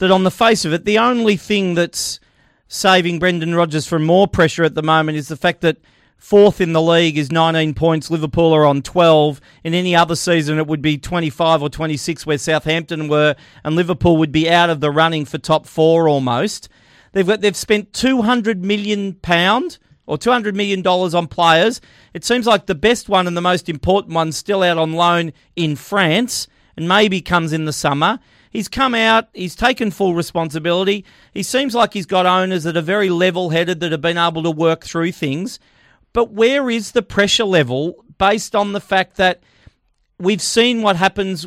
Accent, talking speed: Australian, 190 wpm